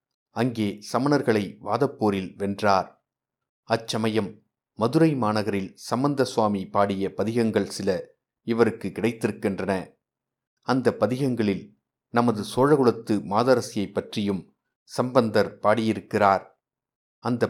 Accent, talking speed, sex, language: native, 80 wpm, male, Tamil